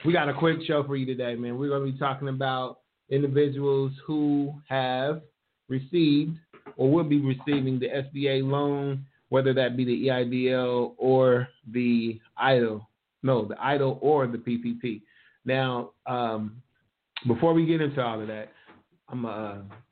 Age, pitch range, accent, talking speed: 30-49, 120-140 Hz, American, 155 wpm